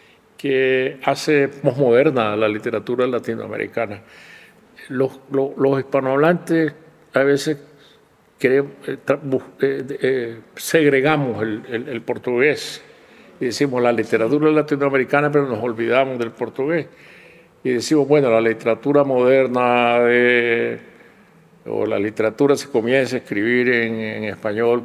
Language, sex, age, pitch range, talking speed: Spanish, male, 50-69, 115-145 Hz, 120 wpm